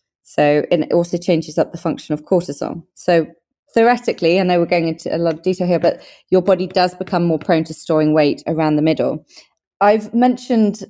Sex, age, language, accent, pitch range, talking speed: female, 30-49, English, British, 155-185 Hz, 205 wpm